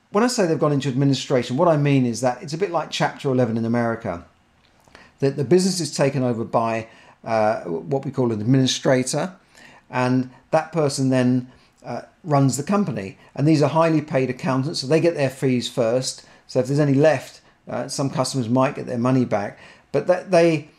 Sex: male